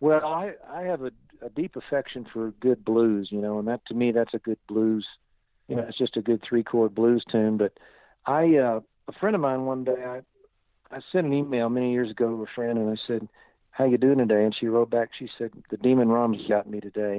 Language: English